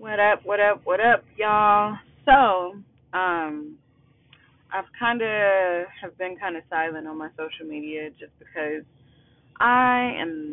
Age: 20-39